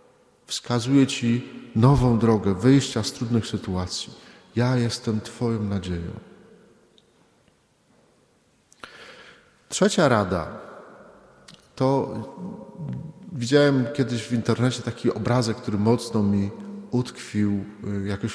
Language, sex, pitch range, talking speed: Polish, male, 105-130 Hz, 85 wpm